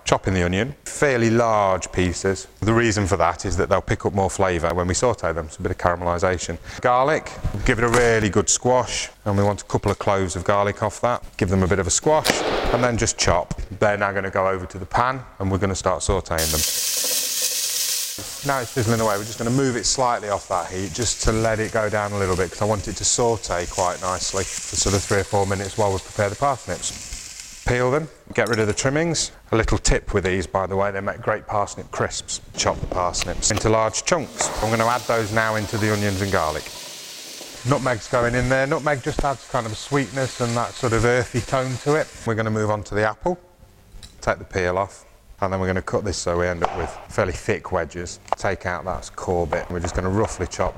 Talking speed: 245 wpm